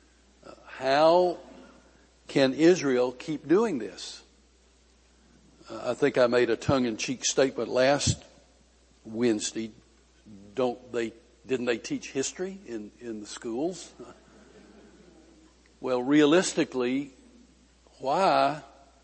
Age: 60-79